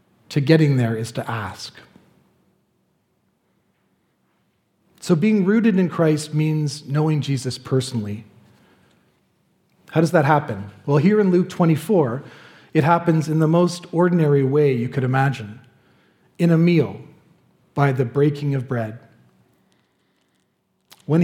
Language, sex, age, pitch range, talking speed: English, male, 40-59, 120-170 Hz, 120 wpm